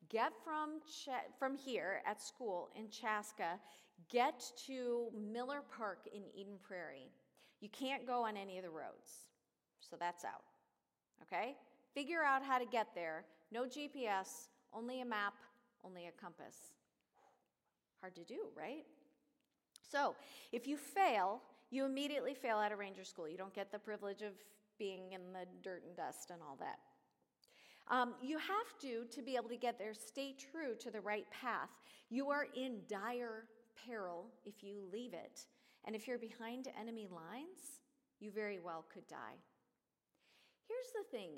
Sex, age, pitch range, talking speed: female, 40-59, 195-265 Hz, 160 wpm